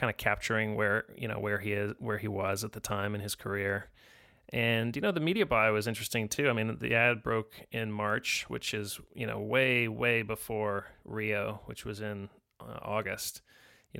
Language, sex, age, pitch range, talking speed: English, male, 30-49, 105-120 Hz, 205 wpm